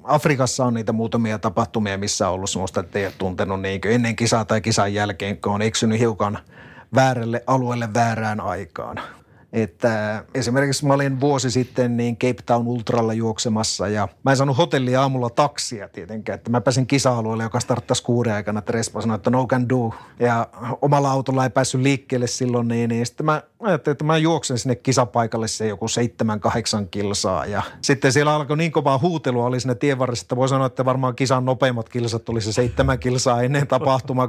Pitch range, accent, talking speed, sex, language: 115-135 Hz, native, 185 wpm, male, Finnish